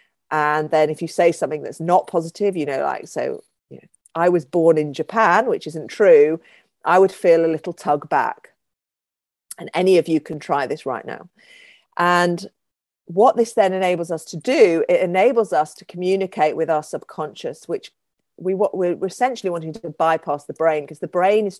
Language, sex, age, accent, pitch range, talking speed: English, female, 40-59, British, 155-190 Hz, 190 wpm